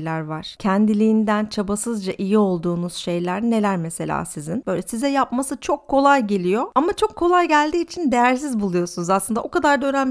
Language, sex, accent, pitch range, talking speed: Turkish, female, native, 185-250 Hz, 160 wpm